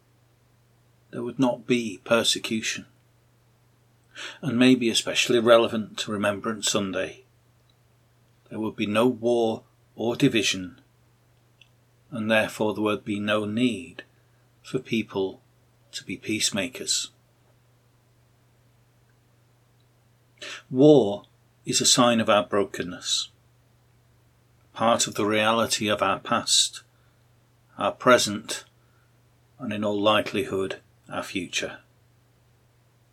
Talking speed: 100 wpm